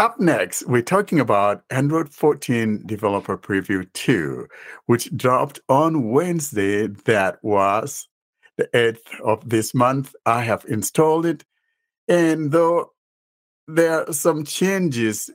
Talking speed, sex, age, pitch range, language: 120 wpm, male, 60-79, 105-140 Hz, English